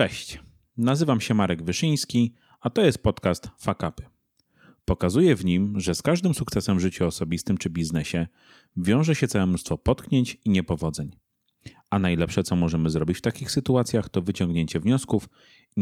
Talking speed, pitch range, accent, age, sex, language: 155 wpm, 90-120 Hz, native, 30-49, male, Polish